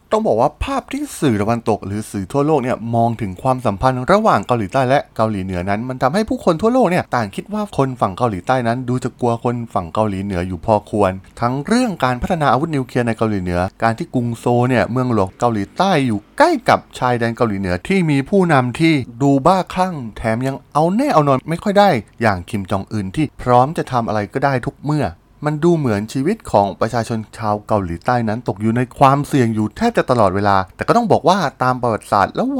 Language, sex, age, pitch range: Thai, male, 20-39, 105-145 Hz